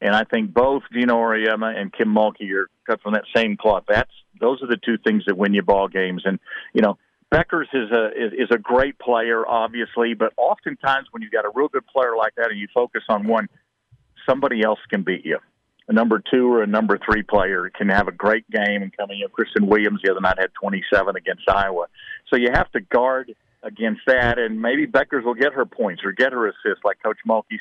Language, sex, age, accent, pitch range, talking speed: English, male, 50-69, American, 105-130 Hz, 225 wpm